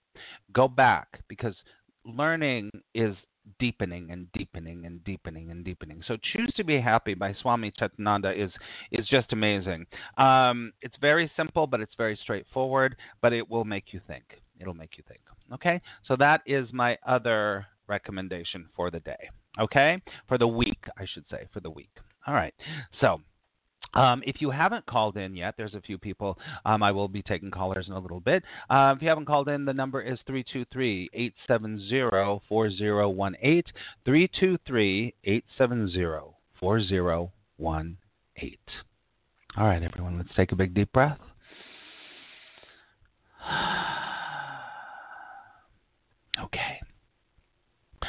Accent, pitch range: American, 95-130 Hz